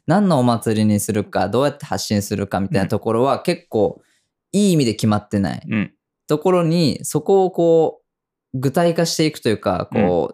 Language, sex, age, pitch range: Japanese, female, 20-39, 115-165 Hz